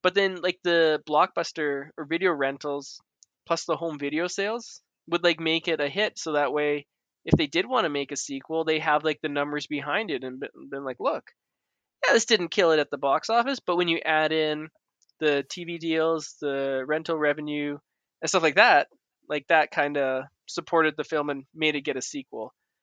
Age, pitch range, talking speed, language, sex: 20-39, 145-180 Hz, 205 wpm, English, male